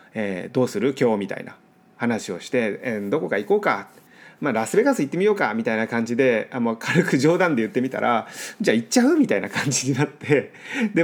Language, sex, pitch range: Japanese, male, 125-200 Hz